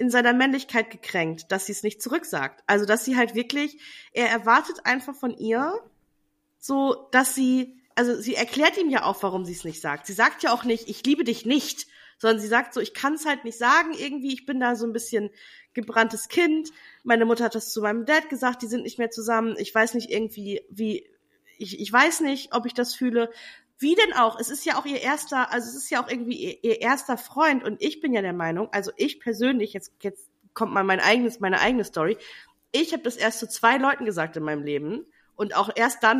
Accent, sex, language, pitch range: German, female, German, 210-280 Hz